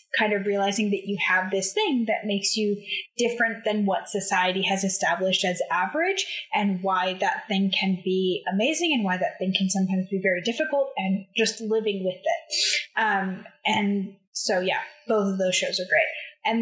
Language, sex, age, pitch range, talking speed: English, female, 10-29, 195-245 Hz, 185 wpm